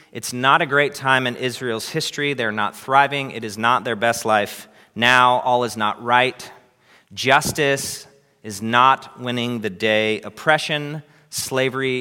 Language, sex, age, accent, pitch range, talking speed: English, male, 30-49, American, 110-140 Hz, 150 wpm